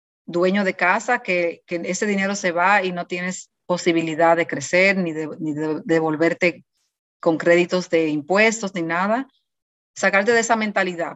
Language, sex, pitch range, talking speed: English, female, 170-205 Hz, 160 wpm